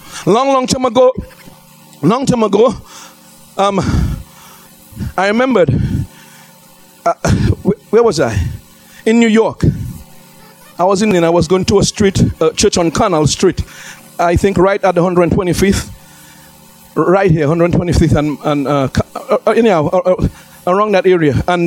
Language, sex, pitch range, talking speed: English, male, 160-250 Hz, 135 wpm